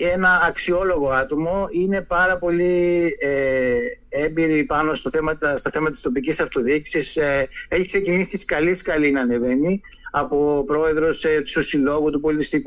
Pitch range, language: 155-190 Hz, Greek